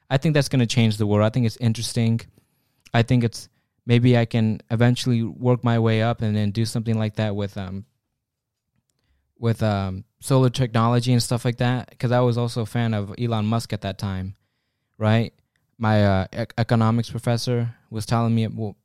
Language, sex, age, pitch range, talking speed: English, male, 20-39, 110-135 Hz, 200 wpm